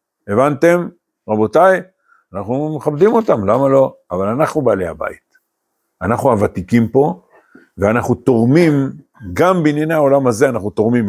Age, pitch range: 50-69, 95-155 Hz